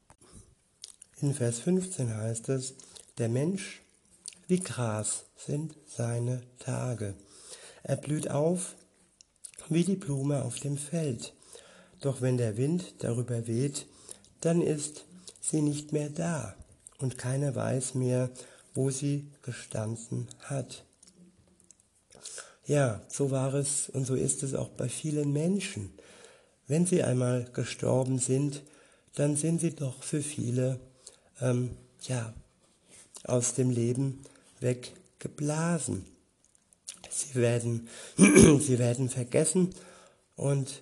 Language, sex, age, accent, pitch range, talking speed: German, male, 60-79, German, 125-145 Hz, 110 wpm